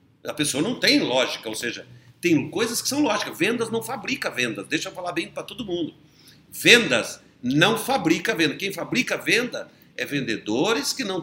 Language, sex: Portuguese, male